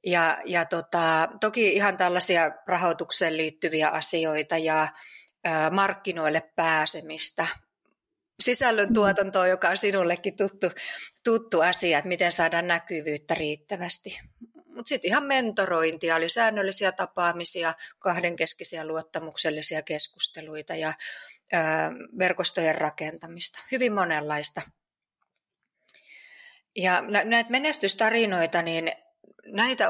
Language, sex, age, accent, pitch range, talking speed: Finnish, female, 30-49, native, 165-210 Hz, 90 wpm